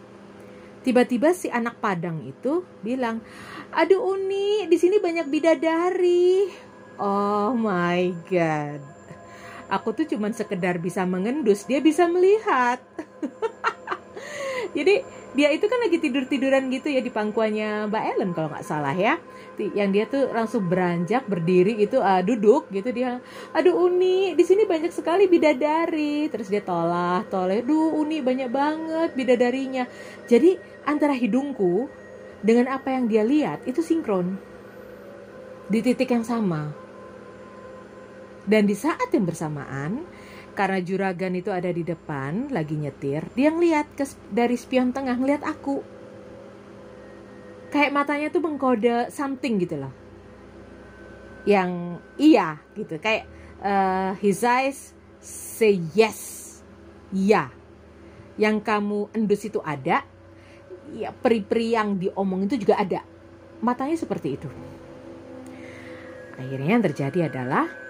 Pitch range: 190-300 Hz